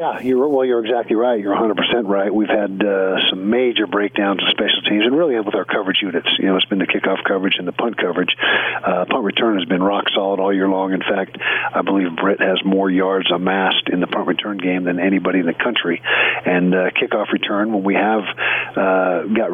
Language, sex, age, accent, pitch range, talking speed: English, male, 50-69, American, 95-105 Hz, 225 wpm